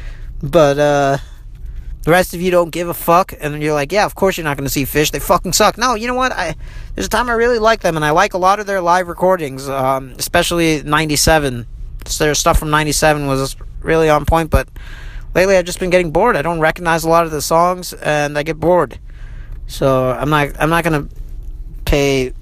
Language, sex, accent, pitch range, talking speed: English, male, American, 120-160 Hz, 220 wpm